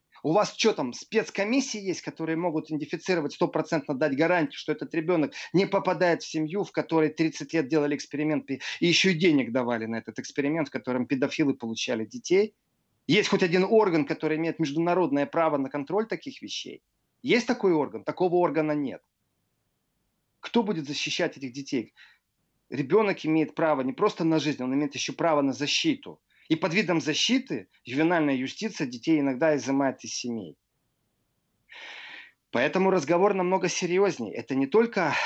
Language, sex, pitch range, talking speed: Russian, male, 145-190 Hz, 155 wpm